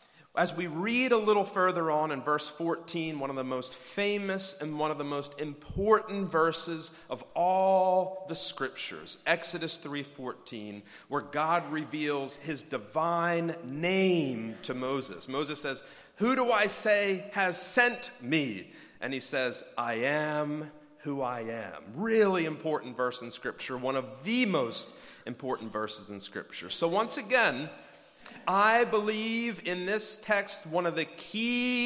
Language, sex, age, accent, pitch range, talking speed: English, male, 40-59, American, 150-205 Hz, 145 wpm